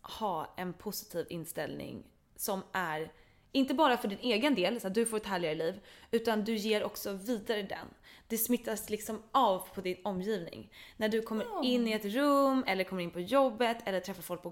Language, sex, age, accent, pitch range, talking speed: English, female, 20-39, Swedish, 180-240 Hz, 200 wpm